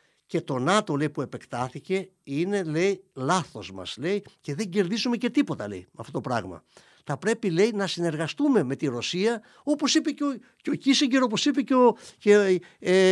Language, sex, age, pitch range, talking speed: Greek, male, 50-69, 120-190 Hz, 190 wpm